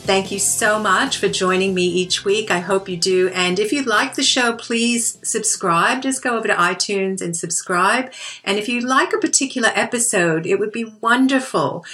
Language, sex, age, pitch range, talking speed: English, female, 50-69, 180-225 Hz, 195 wpm